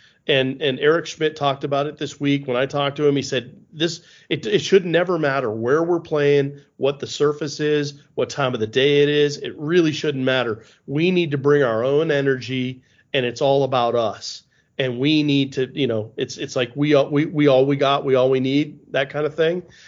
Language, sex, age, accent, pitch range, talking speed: English, male, 40-59, American, 130-150 Hz, 230 wpm